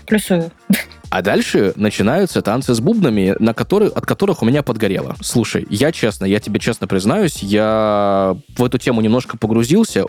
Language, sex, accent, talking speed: Russian, male, native, 155 wpm